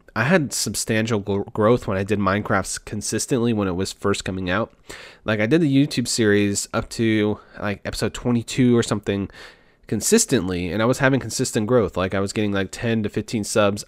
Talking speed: 195 wpm